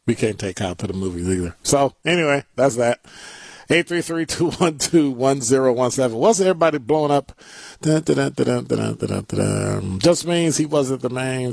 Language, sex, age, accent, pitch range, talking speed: English, male, 40-59, American, 110-155 Hz, 210 wpm